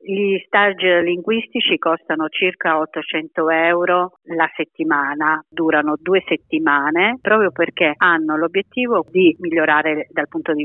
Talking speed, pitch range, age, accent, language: 120 wpm, 150-170 Hz, 40-59, native, Italian